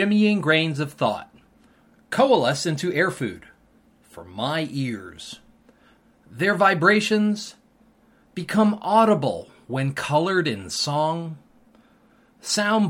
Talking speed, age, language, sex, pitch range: 95 wpm, 40-59, English, male, 145-210 Hz